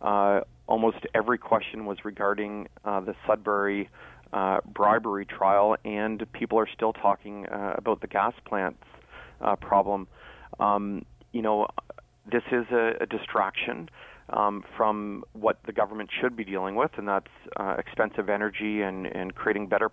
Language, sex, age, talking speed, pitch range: English, male, 30-49, 150 wpm, 100-115 Hz